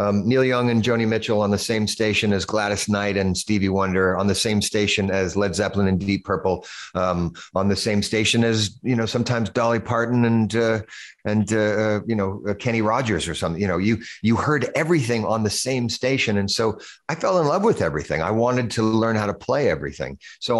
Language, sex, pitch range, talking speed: English, male, 90-115 Hz, 220 wpm